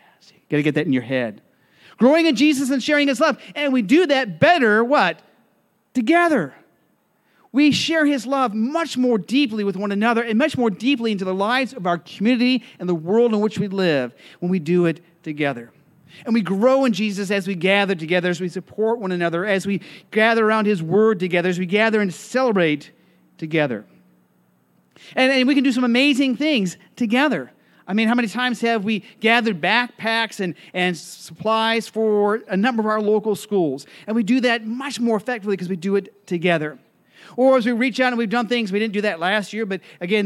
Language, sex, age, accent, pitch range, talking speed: English, male, 40-59, American, 185-255 Hz, 205 wpm